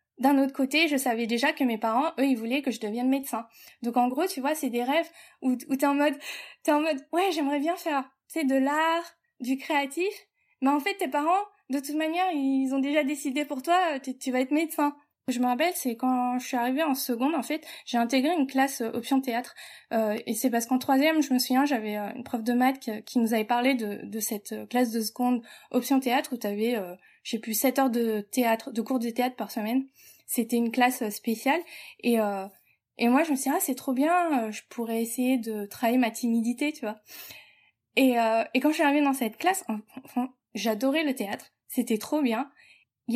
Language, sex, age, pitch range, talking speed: French, female, 20-39, 235-290 Hz, 225 wpm